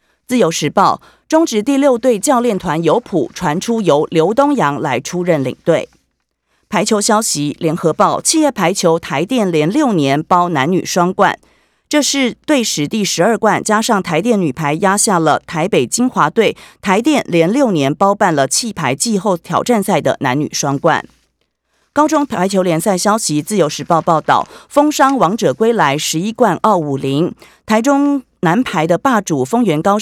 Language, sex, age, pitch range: Chinese, female, 30-49, 155-230 Hz